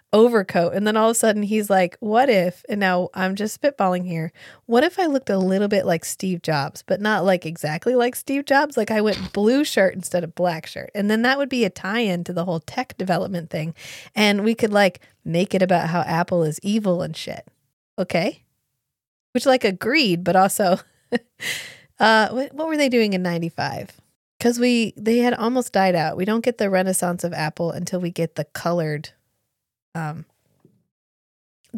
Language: English